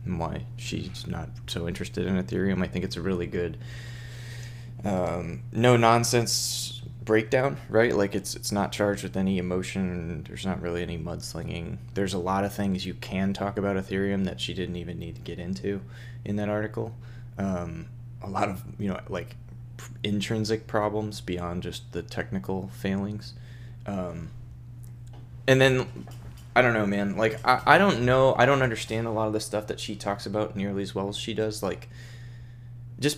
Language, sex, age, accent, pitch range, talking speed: English, male, 20-39, American, 95-120 Hz, 180 wpm